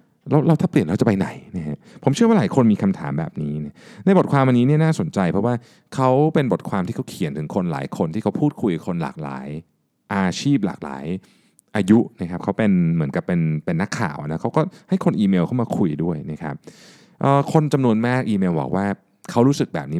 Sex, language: male, Thai